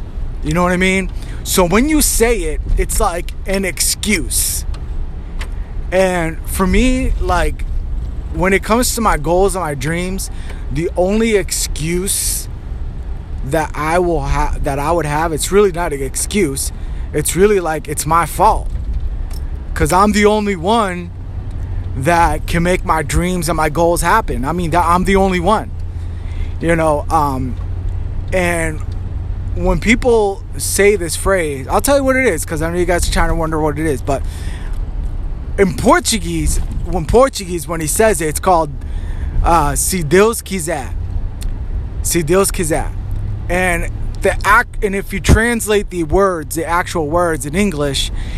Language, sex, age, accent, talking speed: English, male, 20-39, American, 160 wpm